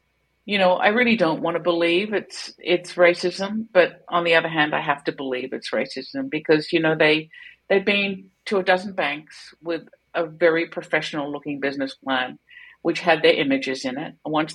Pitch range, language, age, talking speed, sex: 155-195 Hz, English, 50-69, 190 wpm, female